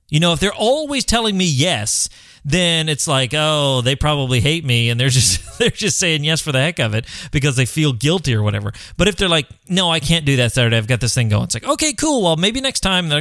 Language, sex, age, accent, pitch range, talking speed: English, male, 30-49, American, 125-180 Hz, 265 wpm